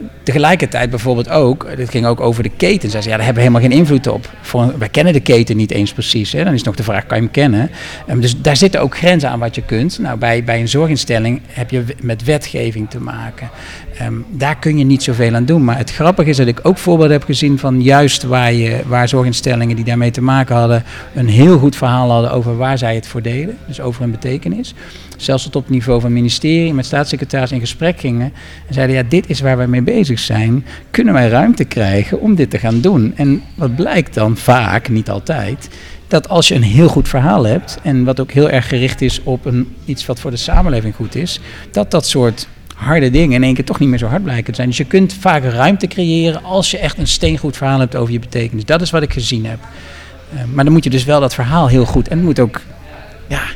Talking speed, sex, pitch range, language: 240 wpm, male, 120-145 Hz, Dutch